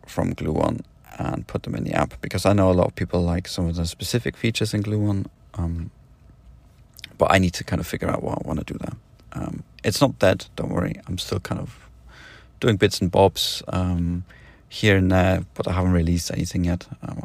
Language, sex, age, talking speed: English, male, 40-59, 225 wpm